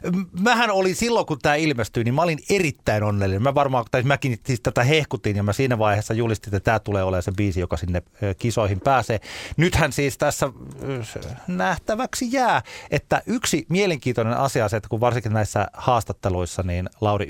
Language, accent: Finnish, native